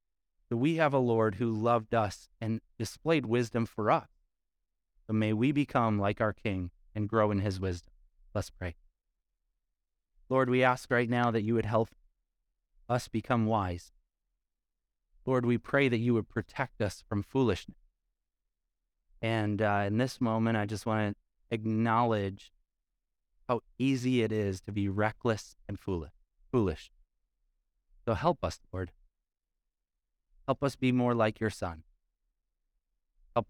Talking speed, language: 145 wpm, English